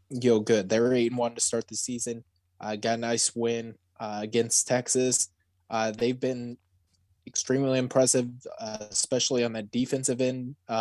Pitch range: 110-130 Hz